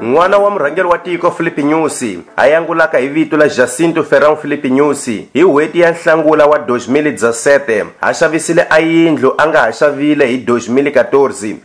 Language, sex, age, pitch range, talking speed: Portuguese, male, 30-49, 135-160 Hz, 125 wpm